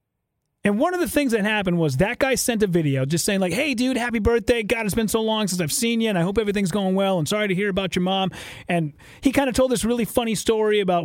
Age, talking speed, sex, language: 30-49, 280 wpm, male, English